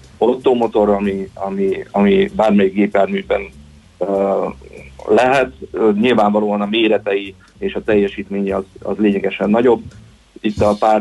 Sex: male